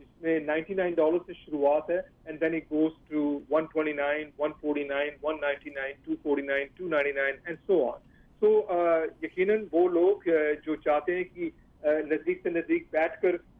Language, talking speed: English, 100 wpm